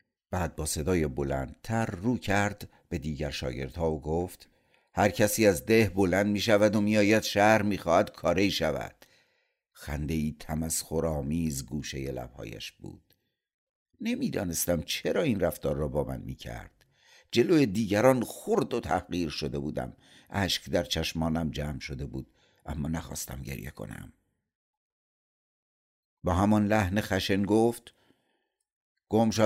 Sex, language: male, Persian